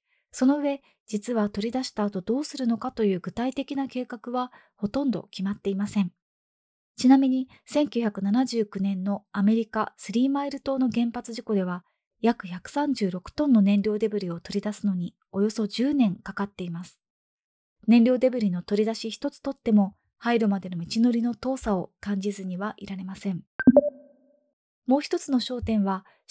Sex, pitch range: female, 200-255 Hz